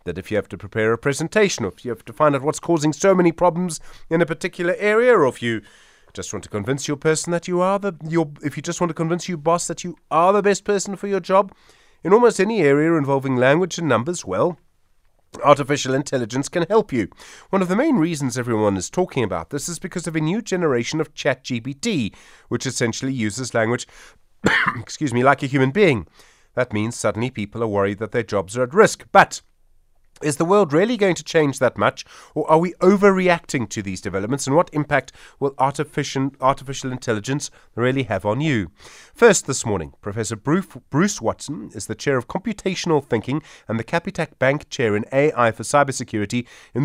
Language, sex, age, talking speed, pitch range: English, male, 30-49, 205 wpm, 120-170 Hz